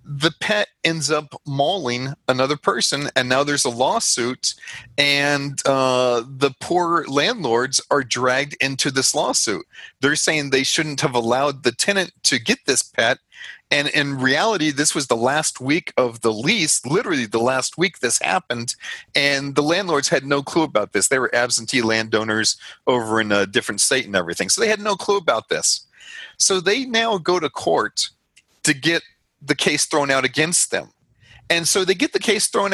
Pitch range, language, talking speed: 125-170 Hz, English, 180 wpm